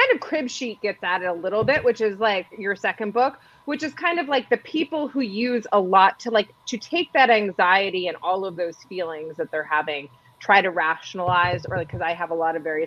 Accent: American